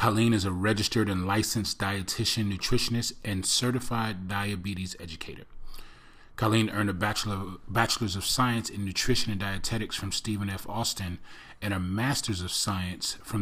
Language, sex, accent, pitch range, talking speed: English, male, American, 95-115 Hz, 145 wpm